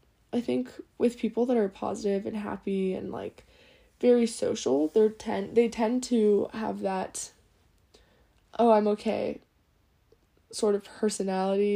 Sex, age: female, 10-29